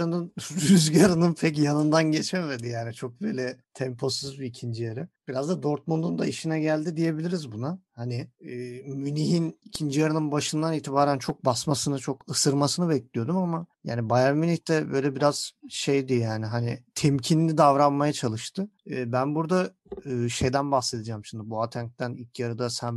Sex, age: male, 50-69